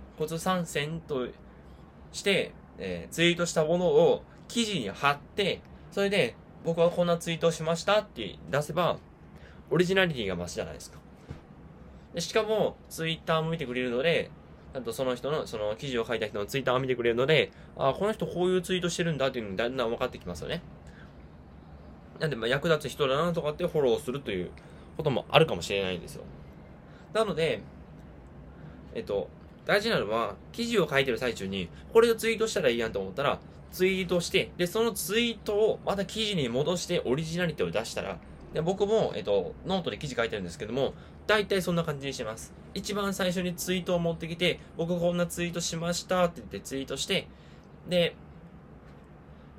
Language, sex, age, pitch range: Japanese, male, 20-39, 125-190 Hz